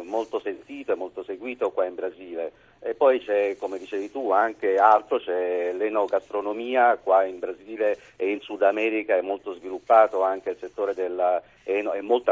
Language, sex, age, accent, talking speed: Italian, male, 50-69, native, 155 wpm